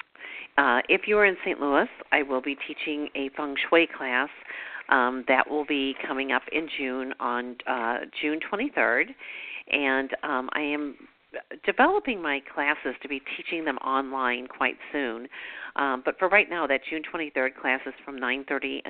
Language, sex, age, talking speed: English, female, 50-69, 170 wpm